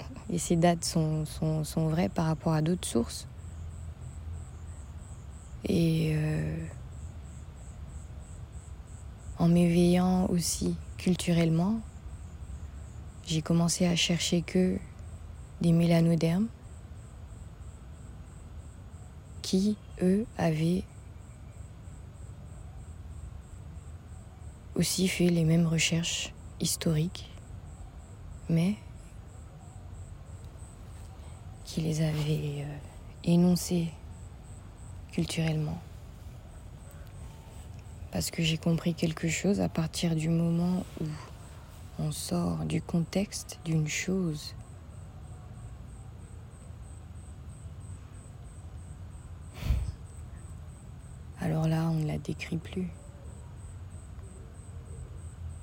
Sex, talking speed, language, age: female, 70 wpm, English, 20-39